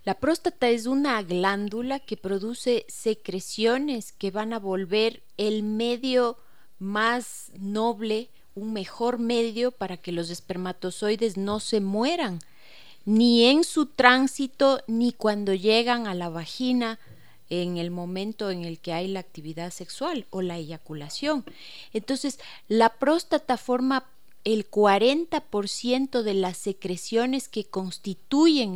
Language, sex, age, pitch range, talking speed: Spanish, female, 30-49, 200-255 Hz, 125 wpm